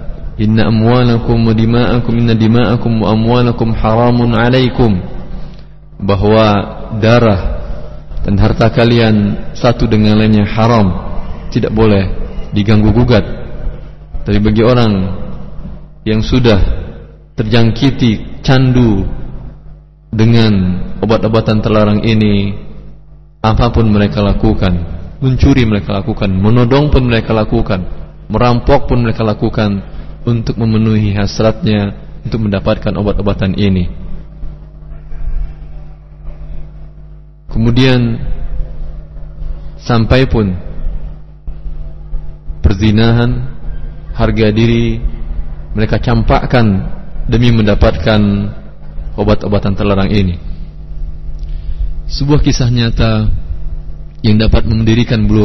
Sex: male